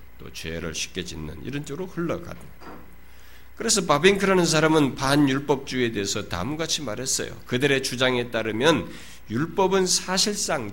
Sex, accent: male, native